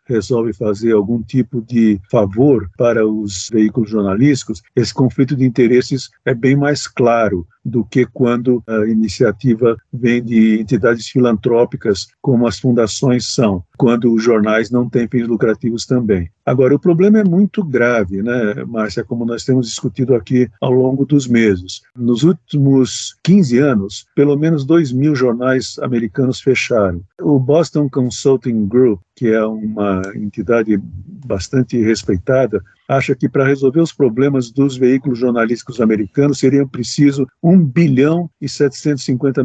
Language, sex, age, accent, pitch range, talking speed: Portuguese, male, 50-69, Brazilian, 115-135 Hz, 140 wpm